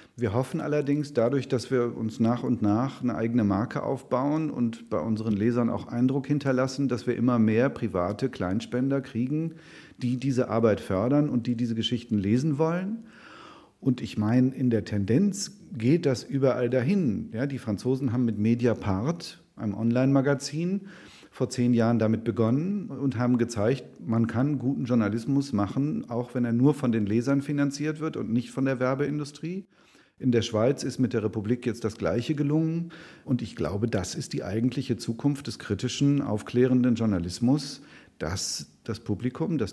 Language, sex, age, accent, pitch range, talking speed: German, male, 40-59, German, 115-140 Hz, 165 wpm